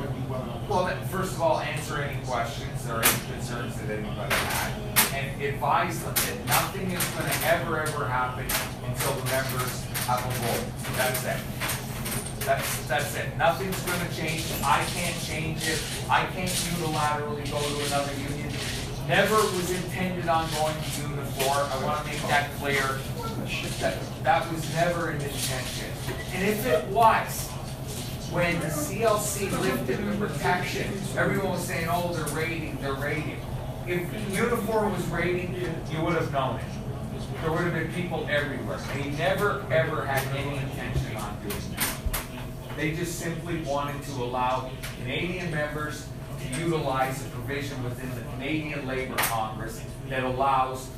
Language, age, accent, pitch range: English, 40-59, American, 125-155 Hz